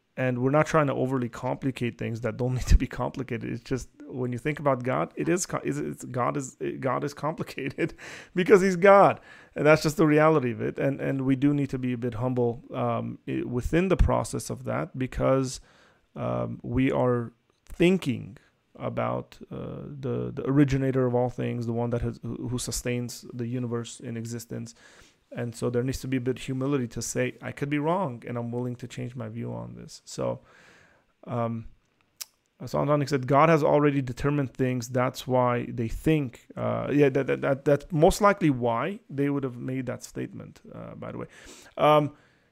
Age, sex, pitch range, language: 30-49, male, 120-150 Hz, English